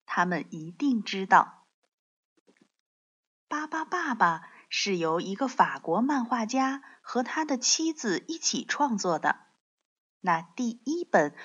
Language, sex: Chinese, female